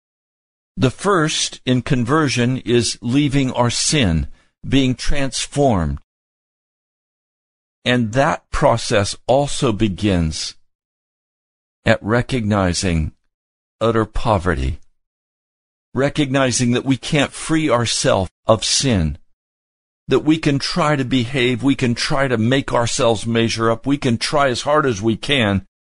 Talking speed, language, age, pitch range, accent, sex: 115 wpm, English, 60-79, 95-130 Hz, American, male